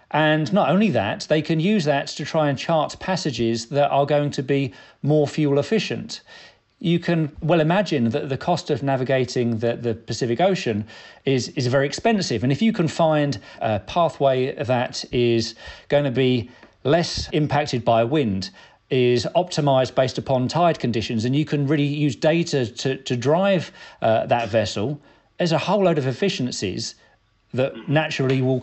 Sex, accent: male, British